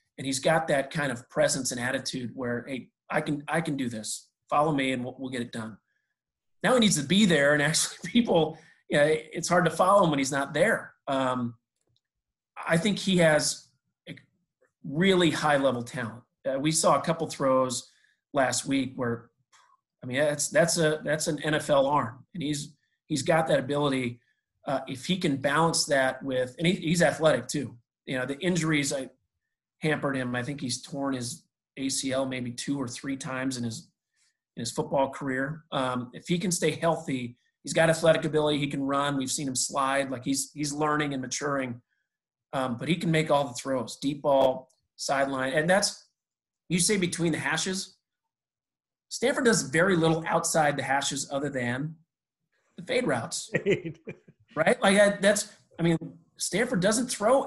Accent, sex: American, male